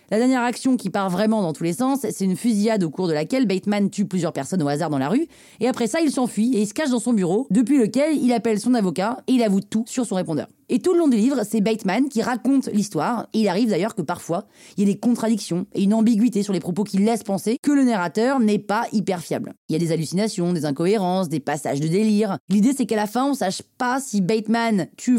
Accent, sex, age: French, female, 30-49